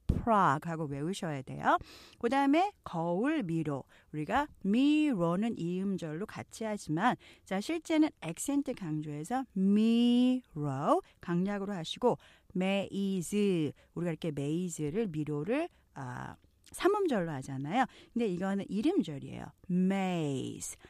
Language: Korean